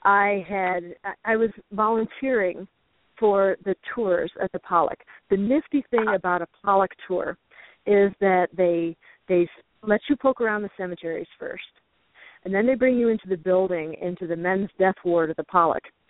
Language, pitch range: English, 175-215 Hz